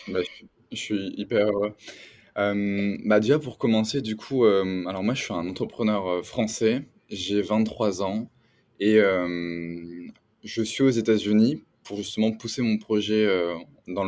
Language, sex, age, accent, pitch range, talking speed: French, male, 20-39, French, 95-115 Hz, 155 wpm